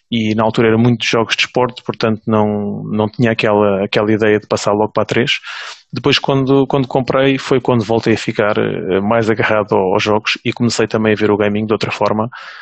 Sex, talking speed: male, 210 wpm